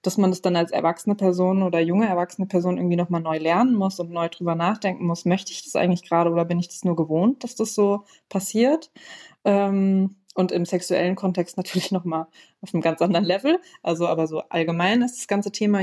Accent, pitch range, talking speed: German, 180-215 Hz, 210 wpm